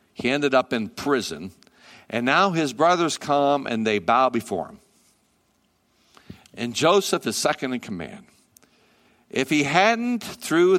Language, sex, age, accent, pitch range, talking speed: English, male, 60-79, American, 115-150 Hz, 140 wpm